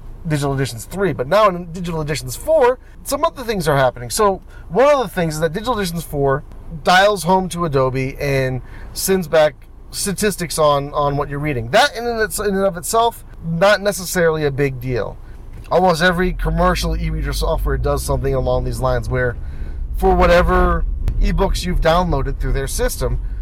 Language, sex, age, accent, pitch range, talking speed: English, male, 30-49, American, 120-180 Hz, 170 wpm